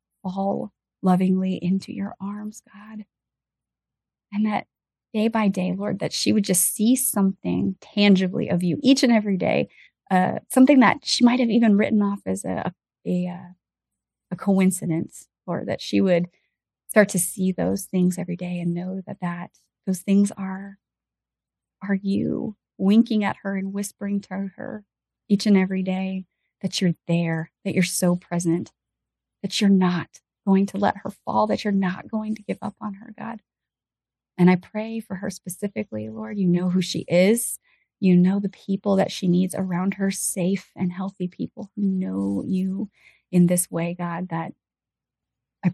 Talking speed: 170 wpm